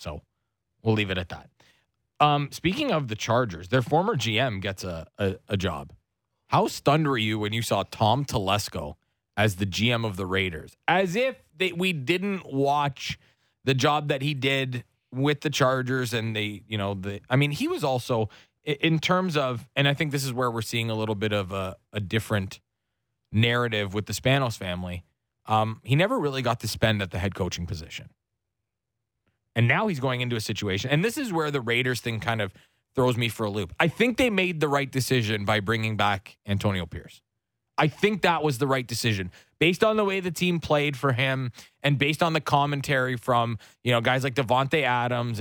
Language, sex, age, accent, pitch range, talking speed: English, male, 20-39, American, 110-145 Hz, 205 wpm